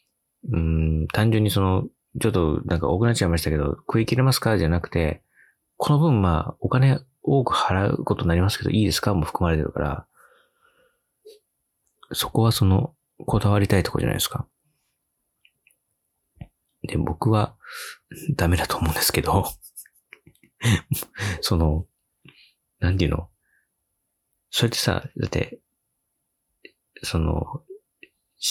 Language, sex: Japanese, male